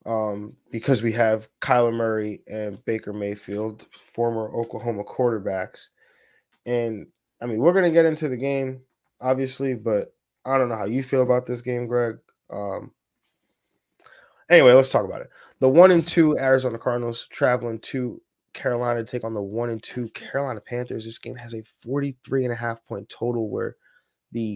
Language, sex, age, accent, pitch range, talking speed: English, male, 20-39, American, 110-125 Hz, 160 wpm